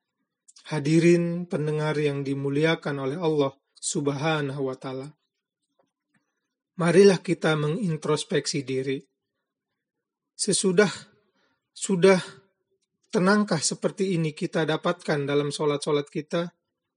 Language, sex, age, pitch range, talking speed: Indonesian, male, 30-49, 150-180 Hz, 80 wpm